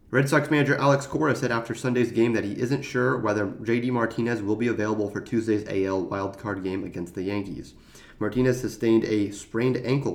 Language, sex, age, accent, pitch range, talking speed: English, male, 30-49, American, 105-130 Hz, 190 wpm